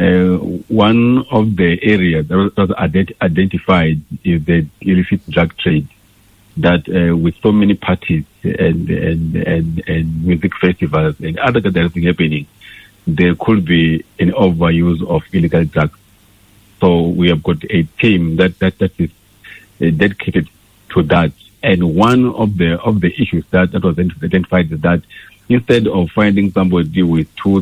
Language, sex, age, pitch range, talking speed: English, male, 50-69, 85-100 Hz, 155 wpm